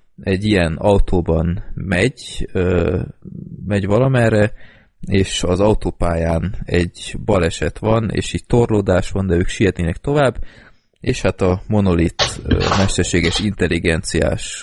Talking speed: 105 wpm